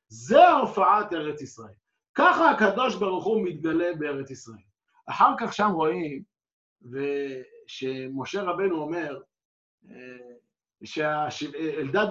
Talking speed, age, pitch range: 95 wpm, 50-69, 160-225 Hz